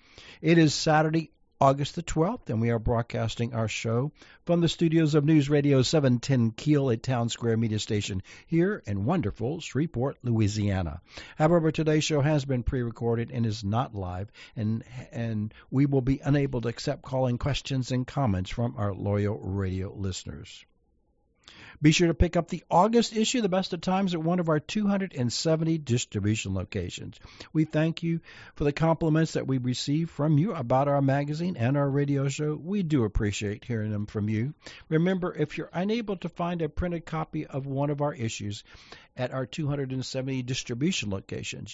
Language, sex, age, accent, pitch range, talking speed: English, male, 60-79, American, 115-155 Hz, 175 wpm